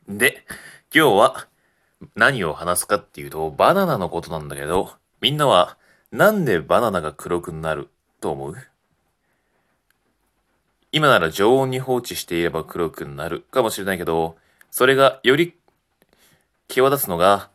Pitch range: 70-115 Hz